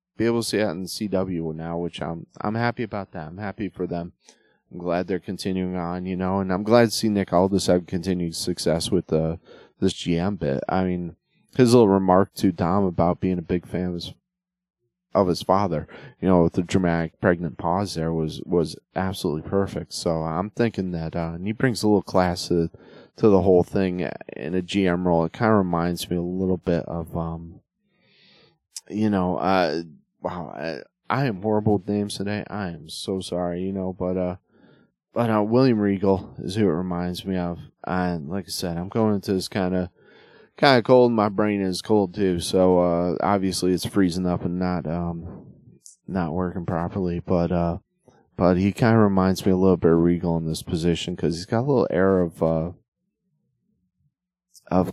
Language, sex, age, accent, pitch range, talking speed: English, male, 30-49, American, 85-100 Hz, 200 wpm